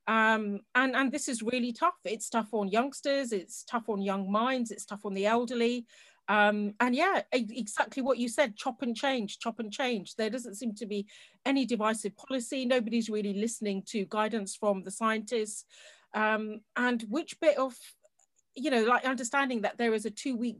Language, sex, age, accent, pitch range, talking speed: English, female, 40-59, British, 215-290 Hz, 185 wpm